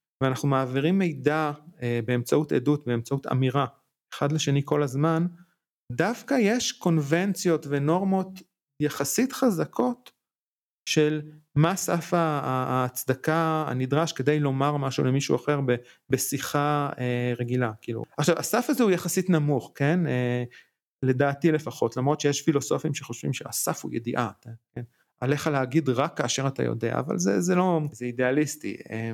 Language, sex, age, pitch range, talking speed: Hebrew, male, 40-59, 135-170 Hz, 120 wpm